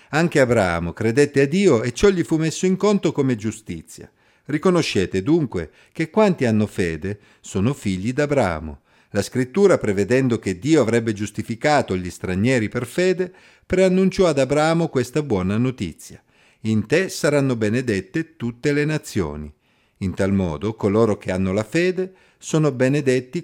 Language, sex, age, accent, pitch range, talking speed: Italian, male, 50-69, native, 100-150 Hz, 145 wpm